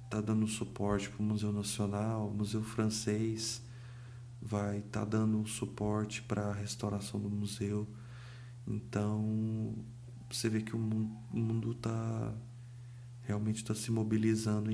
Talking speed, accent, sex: 130 wpm, Brazilian, male